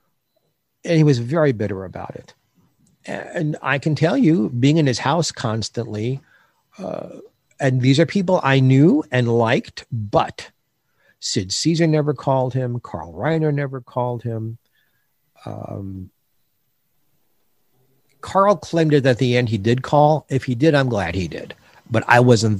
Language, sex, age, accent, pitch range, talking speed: English, male, 50-69, American, 110-155 Hz, 150 wpm